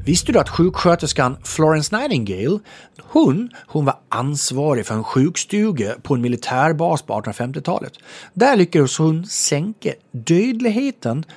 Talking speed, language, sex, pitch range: 110 wpm, English, male, 115-185 Hz